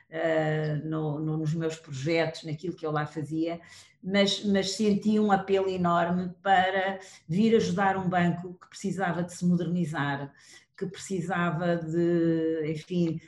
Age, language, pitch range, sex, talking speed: 40-59, Portuguese, 170-205 Hz, female, 125 wpm